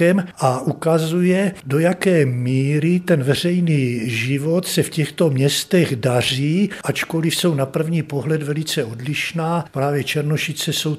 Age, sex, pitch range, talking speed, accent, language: 60-79, male, 140-165 Hz, 125 wpm, native, Czech